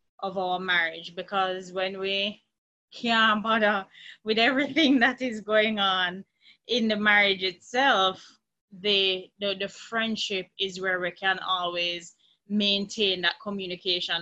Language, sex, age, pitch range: English, female, 20-39, 185-210 Hz